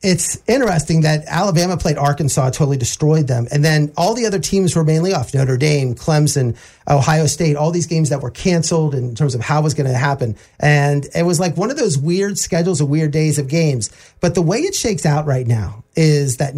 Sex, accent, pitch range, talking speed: male, American, 140-185 Hz, 225 wpm